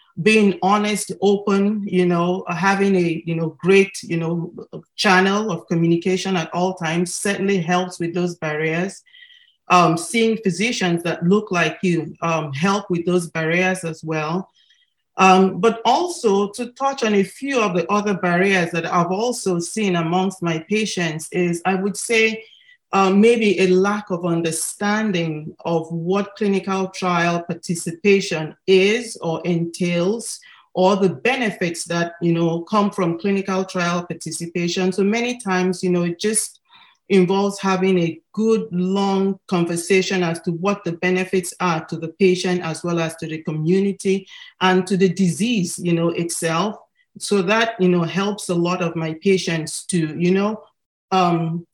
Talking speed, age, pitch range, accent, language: 155 wpm, 40-59, 170-205 Hz, Nigerian, English